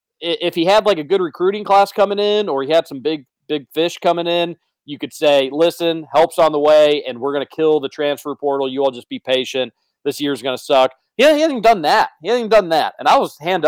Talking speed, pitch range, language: 255 wpm, 115-150 Hz, English